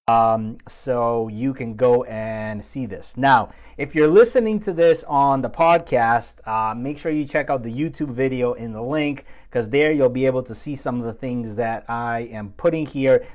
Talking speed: 200 wpm